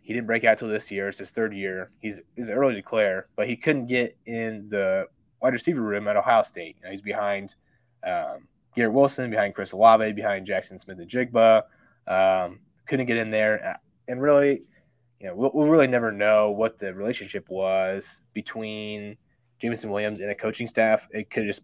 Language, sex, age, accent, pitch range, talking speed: English, male, 20-39, American, 105-120 Hz, 200 wpm